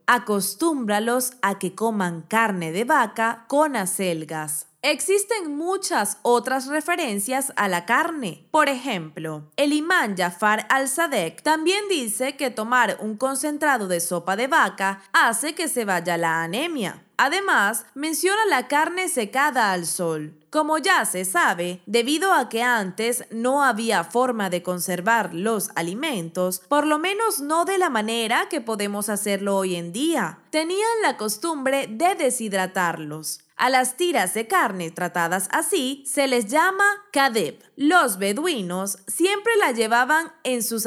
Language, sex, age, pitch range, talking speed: Spanish, female, 20-39, 195-310 Hz, 140 wpm